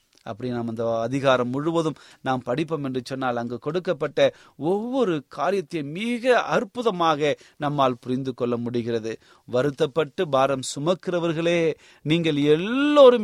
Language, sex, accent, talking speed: Tamil, male, native, 105 wpm